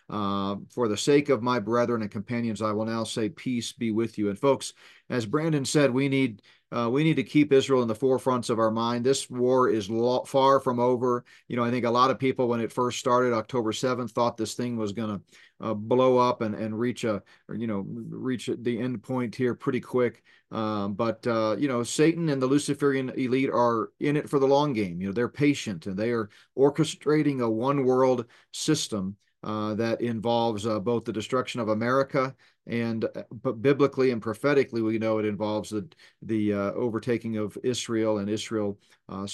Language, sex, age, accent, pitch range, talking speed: English, male, 40-59, American, 110-130 Hz, 205 wpm